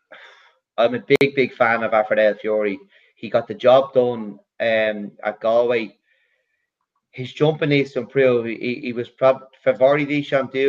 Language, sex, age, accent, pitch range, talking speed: English, male, 30-49, Irish, 110-130 Hz, 145 wpm